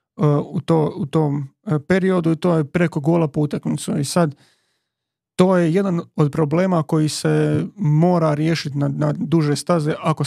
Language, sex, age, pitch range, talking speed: Croatian, male, 40-59, 150-170 Hz, 160 wpm